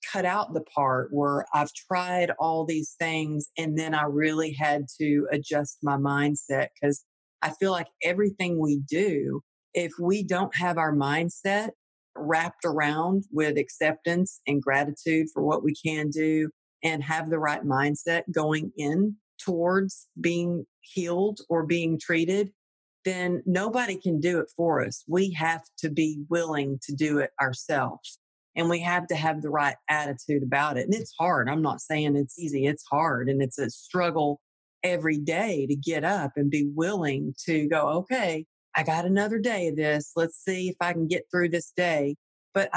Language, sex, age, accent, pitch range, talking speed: English, female, 50-69, American, 145-175 Hz, 175 wpm